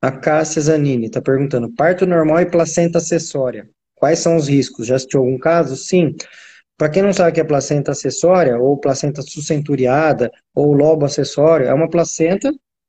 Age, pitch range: 20-39, 140-175 Hz